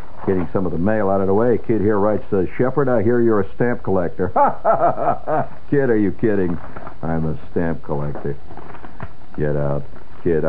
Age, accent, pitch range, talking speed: 60-79, American, 80-110 Hz, 170 wpm